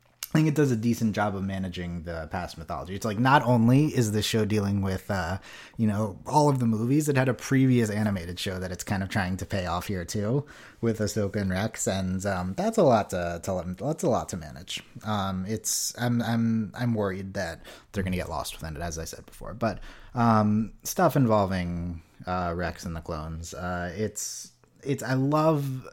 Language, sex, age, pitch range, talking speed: English, male, 30-49, 90-110 Hz, 215 wpm